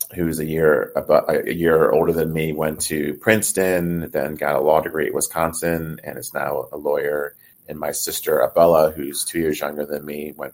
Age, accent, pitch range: 30-49, American, 75-110 Hz